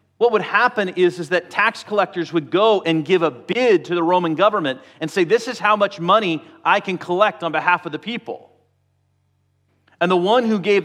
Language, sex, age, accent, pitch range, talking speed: English, male, 40-59, American, 160-205 Hz, 210 wpm